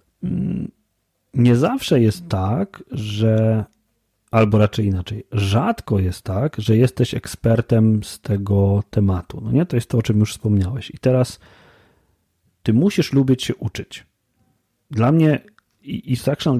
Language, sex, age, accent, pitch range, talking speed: Polish, male, 40-59, native, 110-140 Hz, 135 wpm